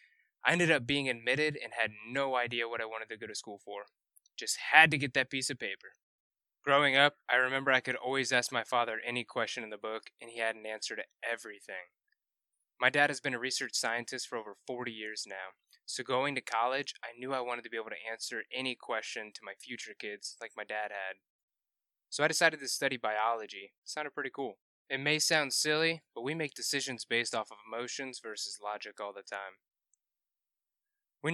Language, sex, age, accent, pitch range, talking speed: English, male, 20-39, American, 115-145 Hz, 210 wpm